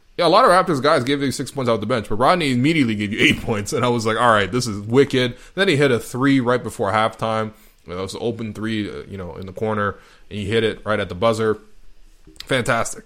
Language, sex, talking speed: English, male, 255 wpm